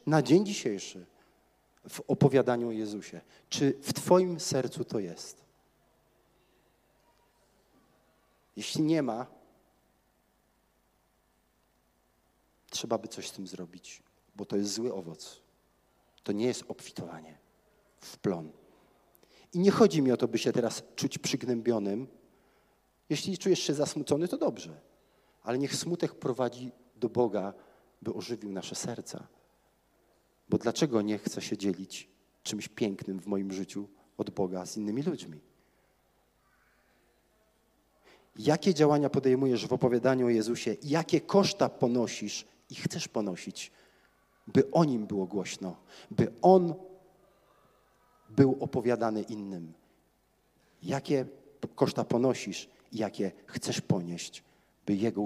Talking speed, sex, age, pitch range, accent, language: 115 wpm, male, 40-59, 100-150 Hz, native, Polish